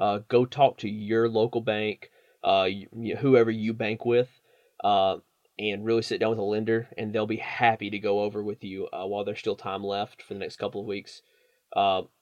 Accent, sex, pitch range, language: American, male, 110-125 Hz, English